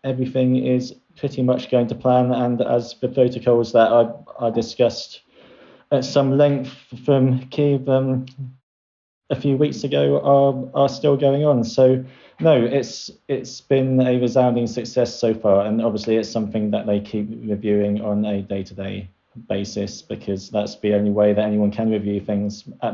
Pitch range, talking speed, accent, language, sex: 105-120 Hz, 165 wpm, British, English, male